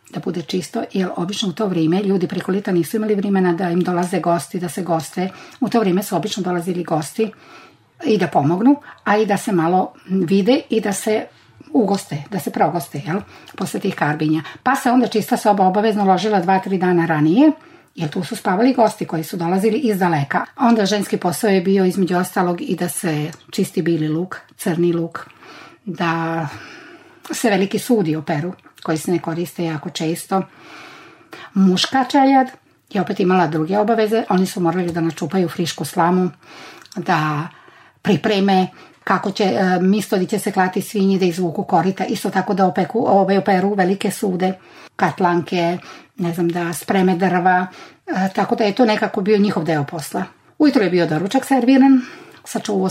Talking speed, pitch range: 170 wpm, 175-215 Hz